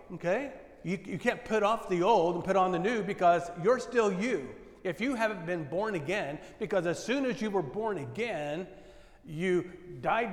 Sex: male